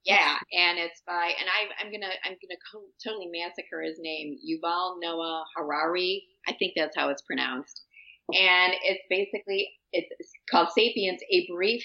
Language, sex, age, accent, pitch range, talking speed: English, female, 30-49, American, 160-210 Hz, 155 wpm